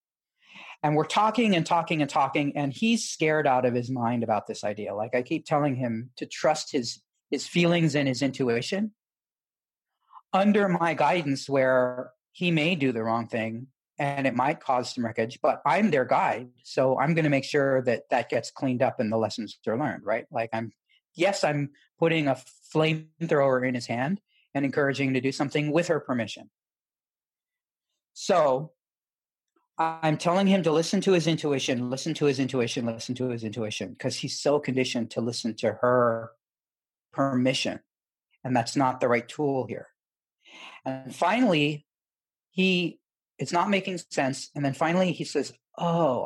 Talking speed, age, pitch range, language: 170 wpm, 40-59, 125-165 Hz, English